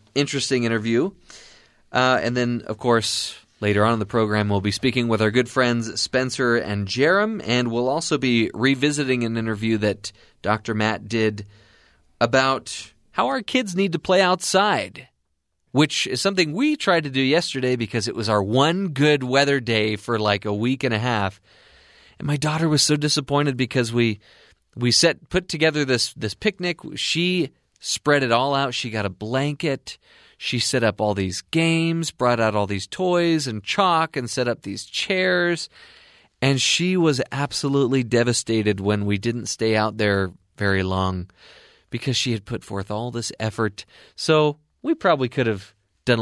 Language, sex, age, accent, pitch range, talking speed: English, male, 30-49, American, 110-145 Hz, 175 wpm